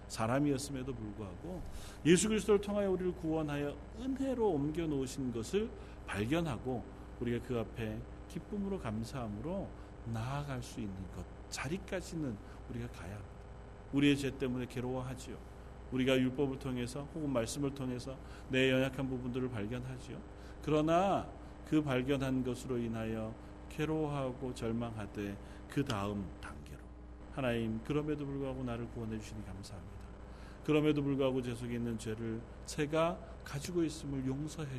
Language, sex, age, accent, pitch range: Korean, male, 40-59, native, 110-150 Hz